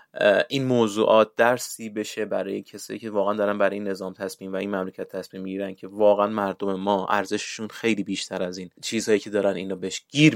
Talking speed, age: 190 wpm, 30-49